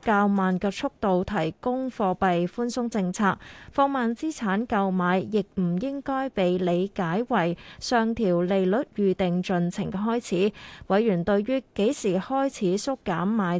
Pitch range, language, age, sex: 185-230 Hz, Chinese, 20-39, female